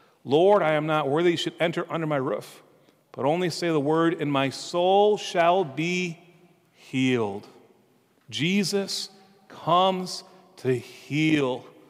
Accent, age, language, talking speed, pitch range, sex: American, 40-59, English, 135 wpm, 135-180 Hz, male